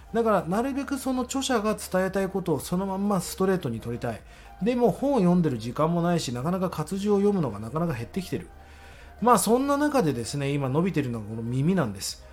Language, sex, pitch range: Japanese, male, 125-195 Hz